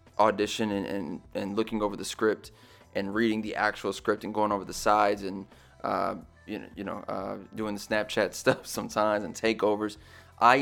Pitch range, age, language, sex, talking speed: 105-115 Hz, 20-39, English, male, 185 wpm